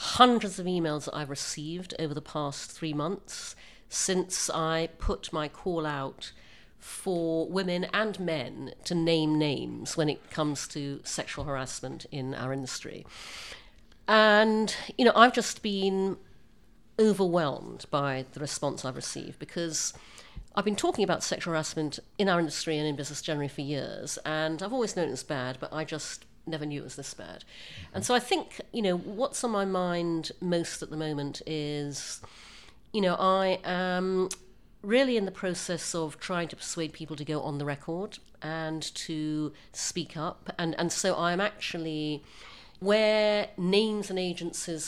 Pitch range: 150-185 Hz